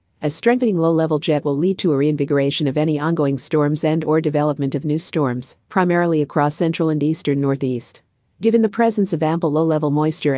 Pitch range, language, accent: 140-170 Hz, English, American